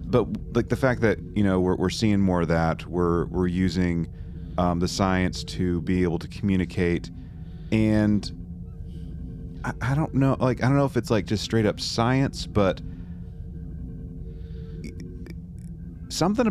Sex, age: male, 30-49